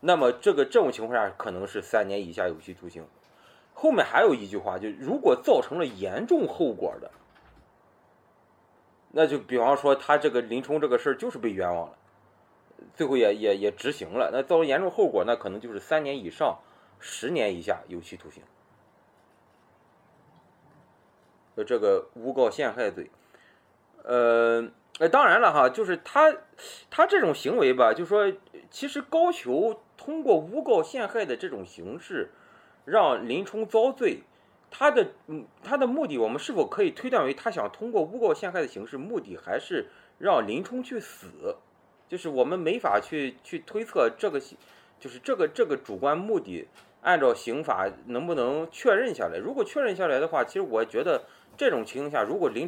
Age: 30-49